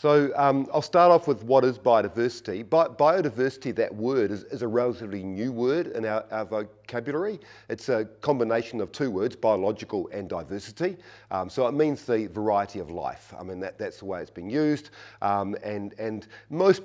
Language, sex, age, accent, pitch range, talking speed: English, male, 50-69, Australian, 105-135 Hz, 190 wpm